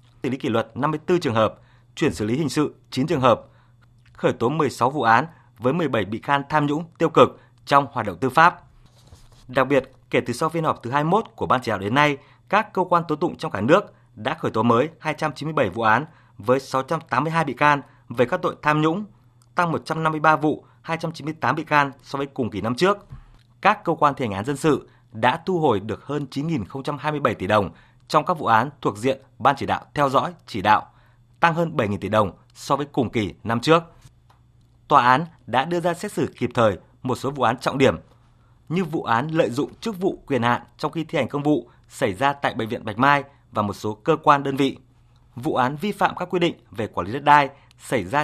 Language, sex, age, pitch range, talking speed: Vietnamese, male, 20-39, 120-155 Hz, 230 wpm